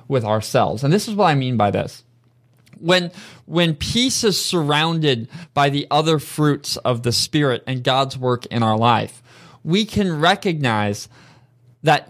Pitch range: 130-190 Hz